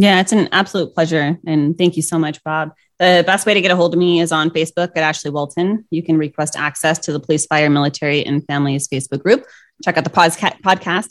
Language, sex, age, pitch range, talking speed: English, female, 20-39, 155-175 Hz, 240 wpm